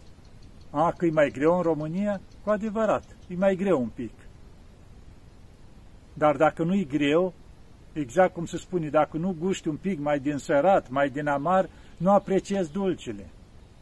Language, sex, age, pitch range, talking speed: Romanian, male, 50-69, 115-175 Hz, 160 wpm